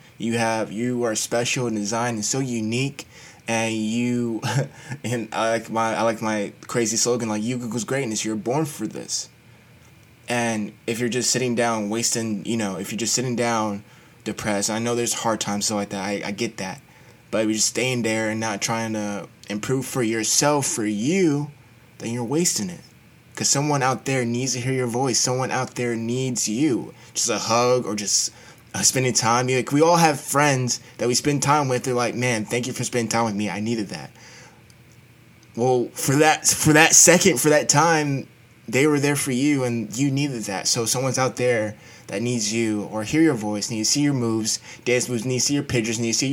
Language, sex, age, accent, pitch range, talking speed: English, male, 20-39, American, 115-135 Hz, 210 wpm